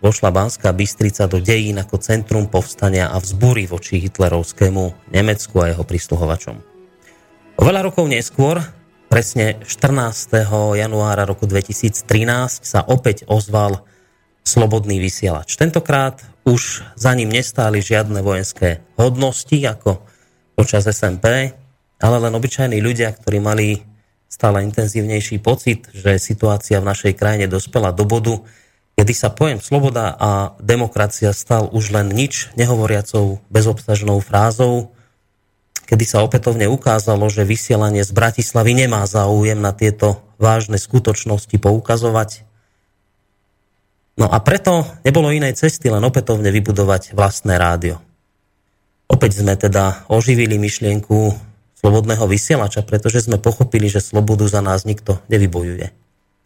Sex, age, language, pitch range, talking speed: male, 30-49, Slovak, 100-120 Hz, 120 wpm